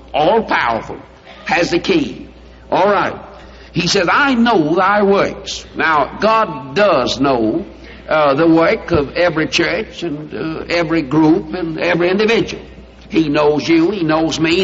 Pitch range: 160-220 Hz